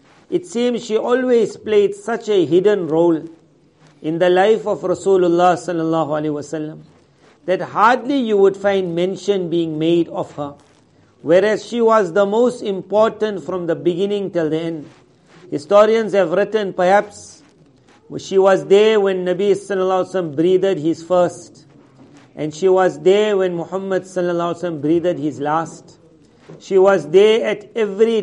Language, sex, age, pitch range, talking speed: English, male, 50-69, 165-200 Hz, 145 wpm